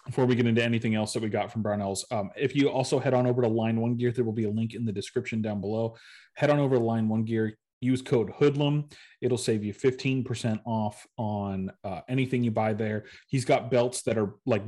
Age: 30-49